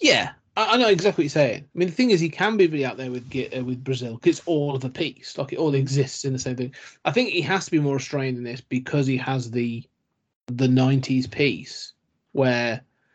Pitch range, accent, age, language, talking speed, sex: 130-160 Hz, British, 30-49, English, 235 wpm, male